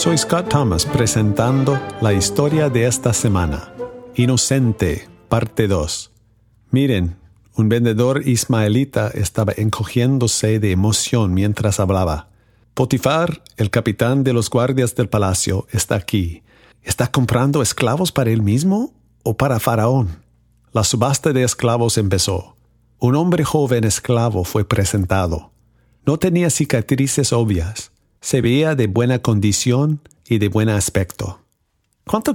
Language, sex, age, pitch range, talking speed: Spanish, male, 50-69, 100-130 Hz, 120 wpm